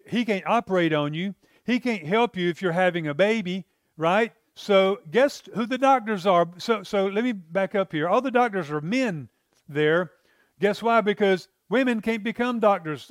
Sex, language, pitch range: male, English, 175-225 Hz